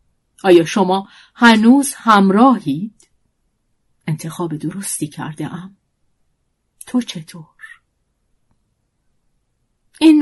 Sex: female